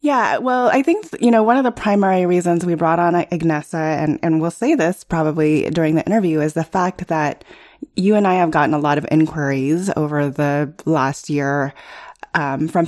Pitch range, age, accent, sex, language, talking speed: 150-180 Hz, 20-39, American, female, English, 200 wpm